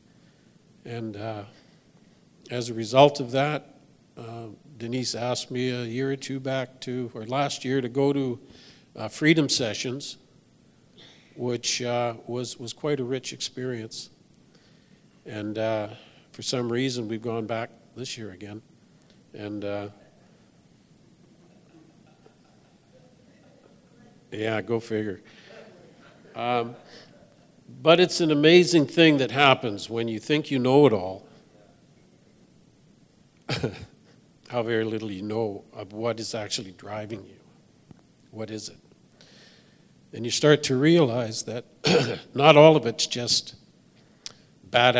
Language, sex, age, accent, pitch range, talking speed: English, male, 50-69, American, 115-135 Hz, 120 wpm